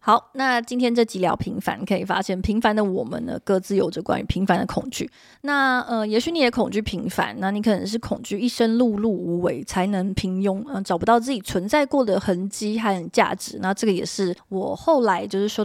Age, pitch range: 20-39, 185-240 Hz